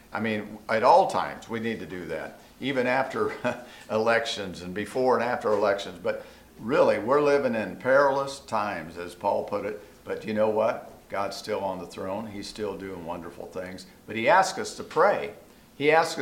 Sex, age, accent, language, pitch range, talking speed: male, 50-69, American, English, 105-140 Hz, 190 wpm